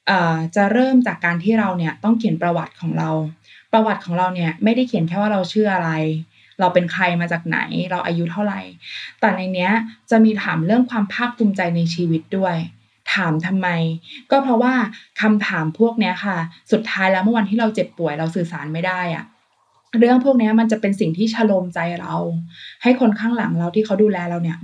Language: Thai